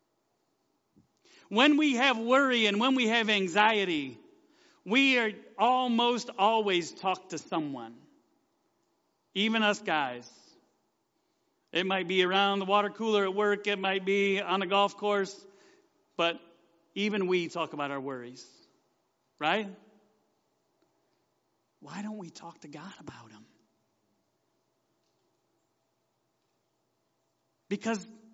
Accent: American